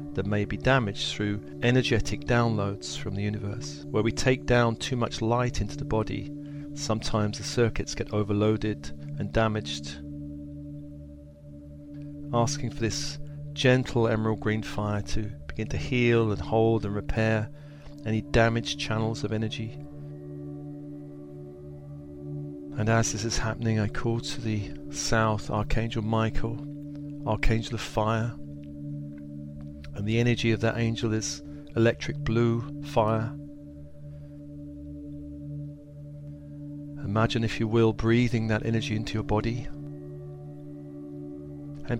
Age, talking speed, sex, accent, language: 40-59, 120 wpm, male, British, English